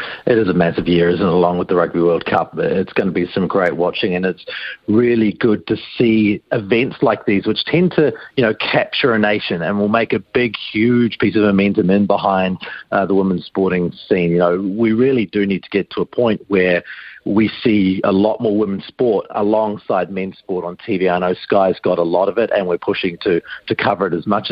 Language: English